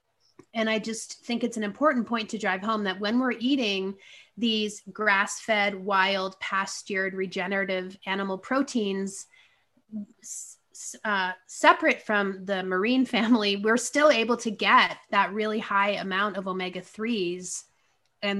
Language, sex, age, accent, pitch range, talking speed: English, female, 30-49, American, 195-230 Hz, 130 wpm